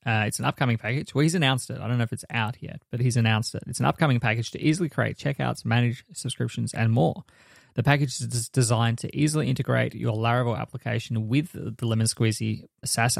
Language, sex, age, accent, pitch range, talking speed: English, male, 20-39, Australian, 115-135 Hz, 215 wpm